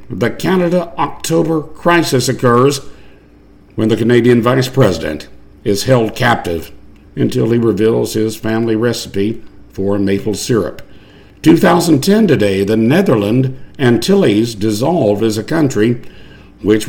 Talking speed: 115 wpm